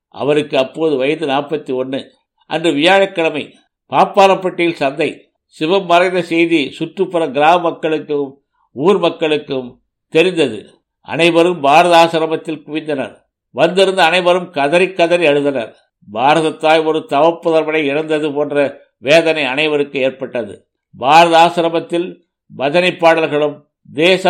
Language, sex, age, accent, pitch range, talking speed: Tamil, male, 60-79, native, 140-165 Hz, 100 wpm